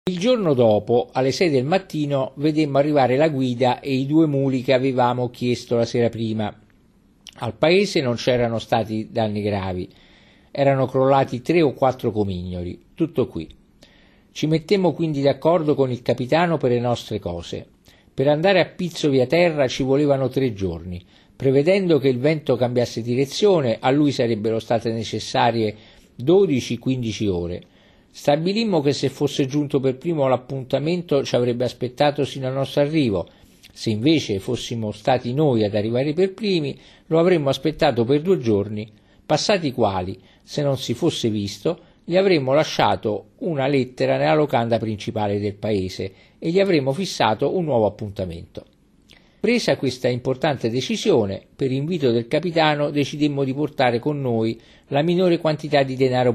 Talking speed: 150 wpm